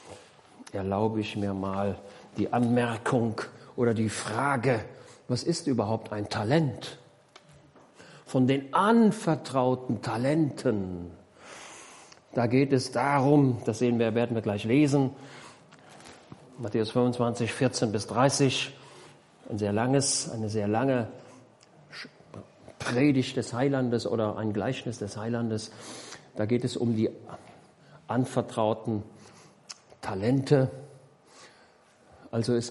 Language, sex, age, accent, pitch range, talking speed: German, male, 50-69, German, 115-140 Hz, 105 wpm